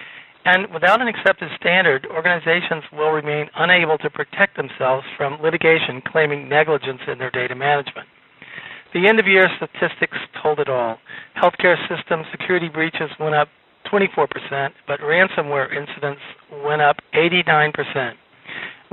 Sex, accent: male, American